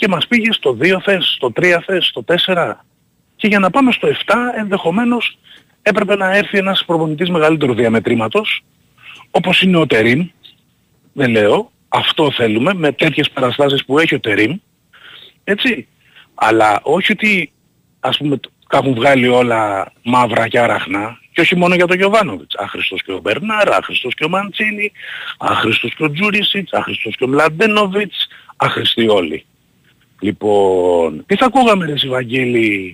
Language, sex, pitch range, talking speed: Greek, male, 125-200 Hz, 145 wpm